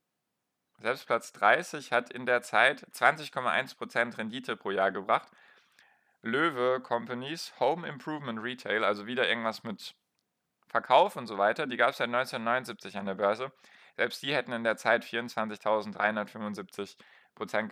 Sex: male